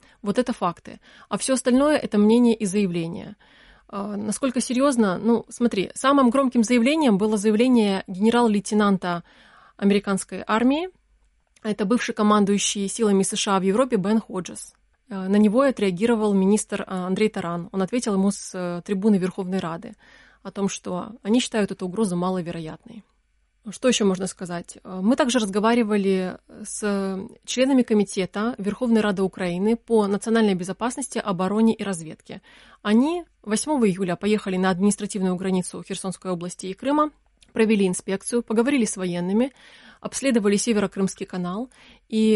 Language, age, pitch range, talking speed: Russian, 20-39, 190-235 Hz, 130 wpm